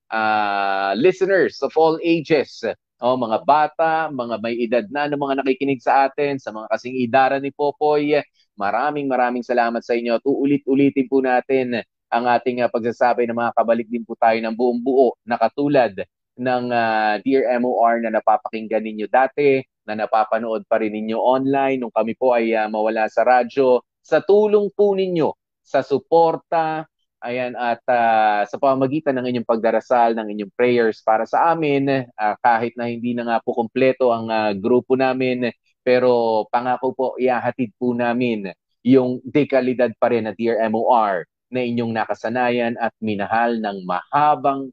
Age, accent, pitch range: 20-39, native, 110-135 Hz